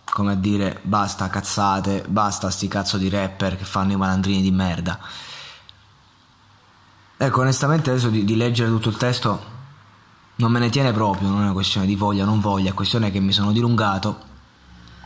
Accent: native